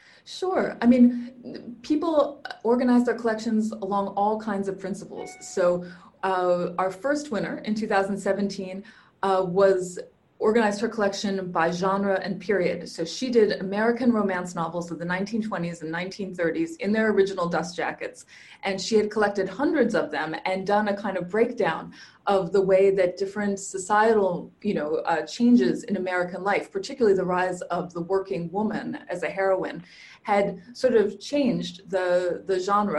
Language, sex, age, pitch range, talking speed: English, female, 20-39, 180-215 Hz, 160 wpm